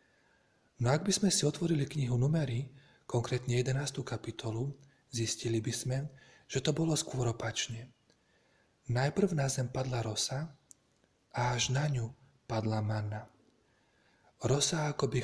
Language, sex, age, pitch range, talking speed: Slovak, male, 40-59, 115-140 Hz, 120 wpm